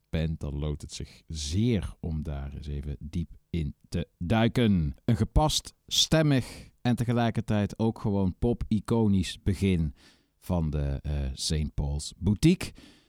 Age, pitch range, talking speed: 50-69, 75-110 Hz, 125 wpm